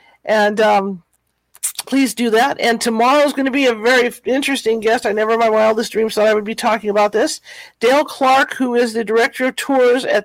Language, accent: English, American